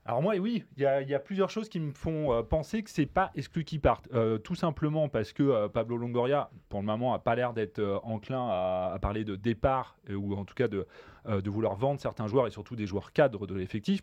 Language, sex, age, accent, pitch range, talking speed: French, male, 30-49, French, 105-140 Hz, 270 wpm